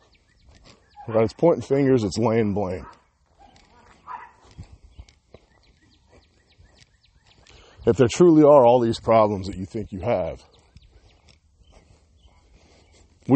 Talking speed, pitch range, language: 90 wpm, 80-115 Hz, English